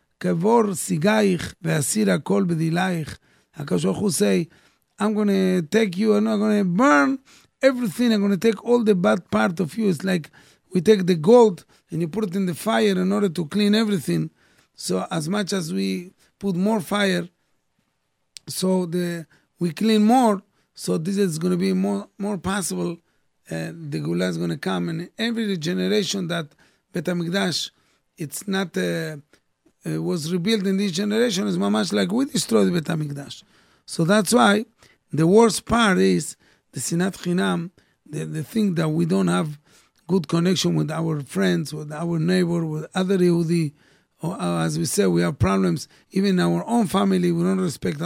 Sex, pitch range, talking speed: male, 165-205 Hz, 160 wpm